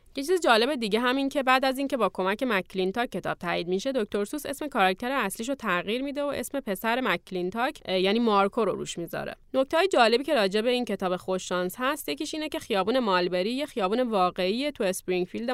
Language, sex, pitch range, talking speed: Persian, female, 190-285 Hz, 200 wpm